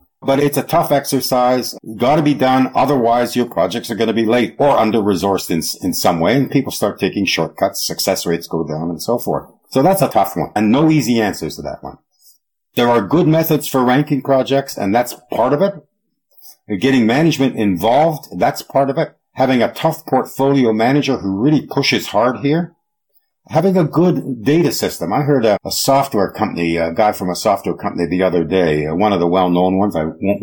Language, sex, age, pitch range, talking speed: English, male, 50-69, 100-145 Hz, 205 wpm